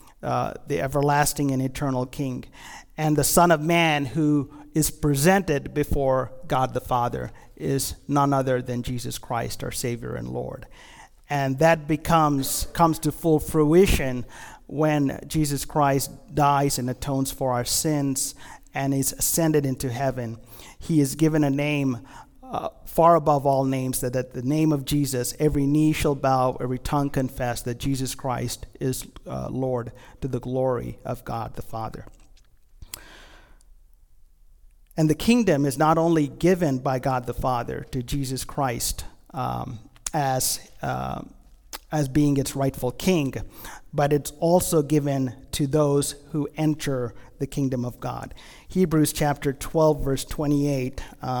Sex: male